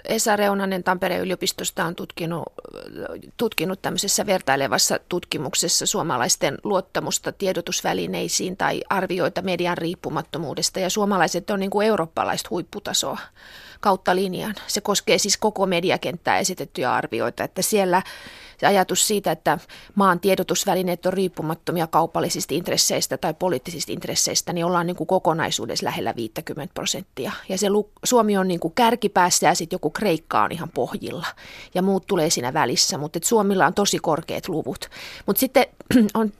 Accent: native